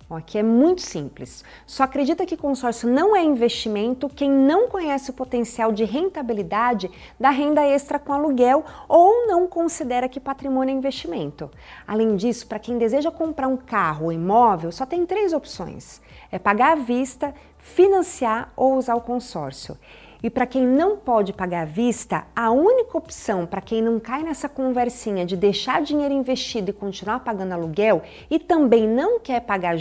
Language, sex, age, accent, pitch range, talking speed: Portuguese, female, 40-59, Brazilian, 200-275 Hz, 165 wpm